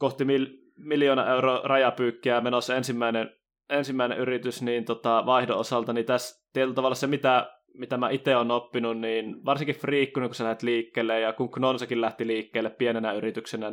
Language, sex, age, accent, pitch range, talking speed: Finnish, male, 20-39, native, 110-130 Hz, 165 wpm